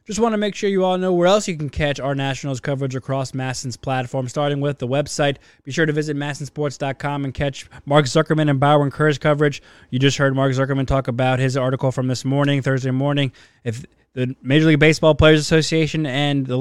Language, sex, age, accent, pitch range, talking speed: English, male, 20-39, American, 130-155 Hz, 215 wpm